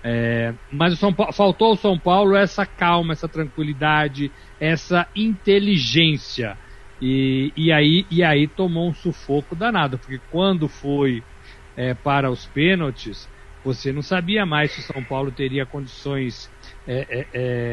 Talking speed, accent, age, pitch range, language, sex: 150 wpm, Brazilian, 60-79, 135-170 Hz, Portuguese, male